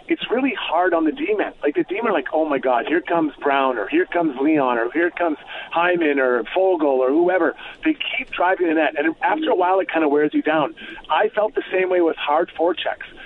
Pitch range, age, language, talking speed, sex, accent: 150-225 Hz, 40-59, English, 230 wpm, male, American